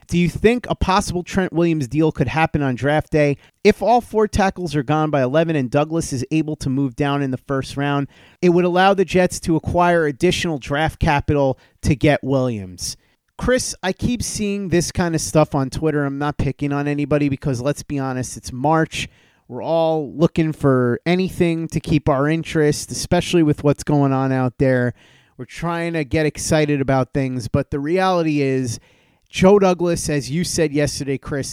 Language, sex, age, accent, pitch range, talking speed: English, male, 30-49, American, 135-165 Hz, 190 wpm